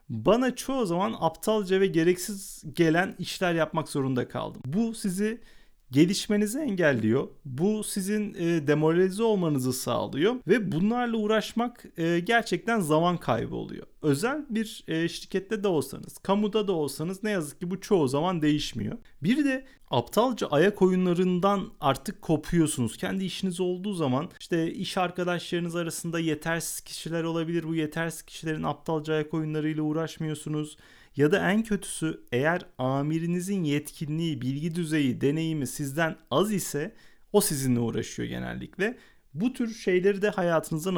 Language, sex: Turkish, male